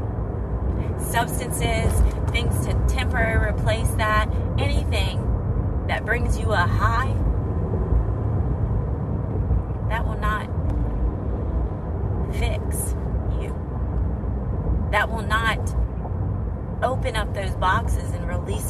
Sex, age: female, 30-49